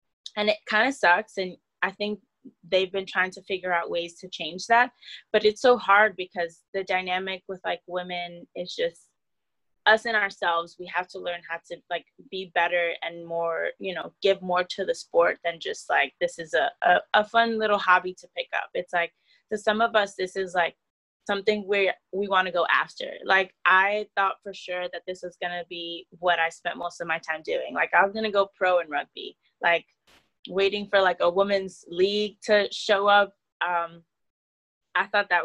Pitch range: 175-205 Hz